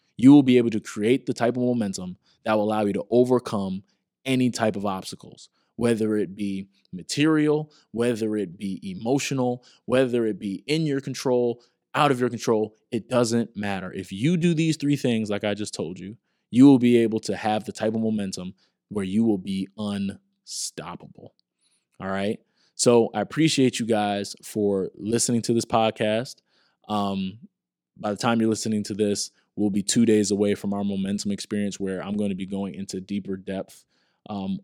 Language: English